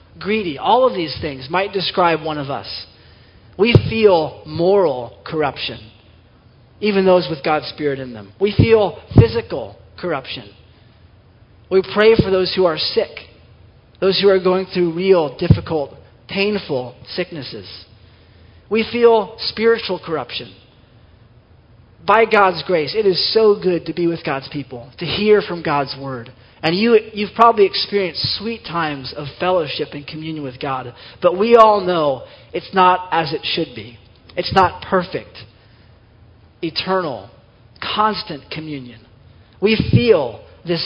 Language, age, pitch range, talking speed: English, 40-59, 115-190 Hz, 140 wpm